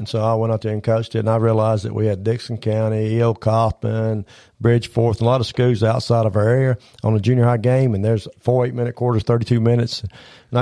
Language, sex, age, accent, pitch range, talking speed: English, male, 50-69, American, 110-130 Hz, 230 wpm